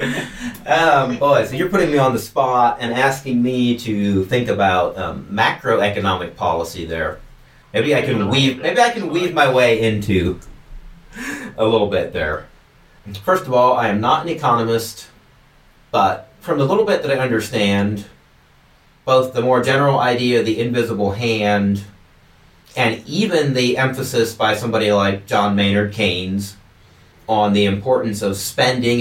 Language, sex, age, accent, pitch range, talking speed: English, male, 40-59, American, 100-135 Hz, 155 wpm